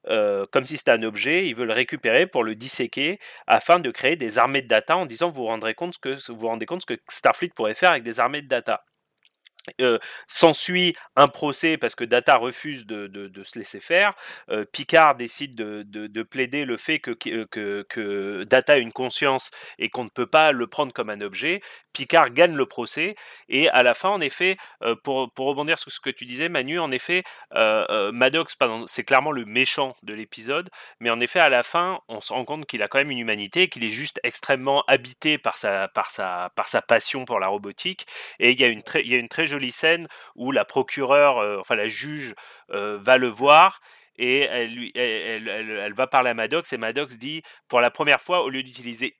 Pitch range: 115-165 Hz